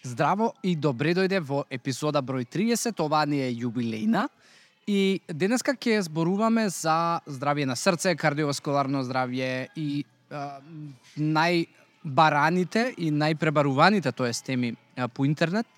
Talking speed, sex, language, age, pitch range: 120 wpm, male, English, 20-39, 135-175 Hz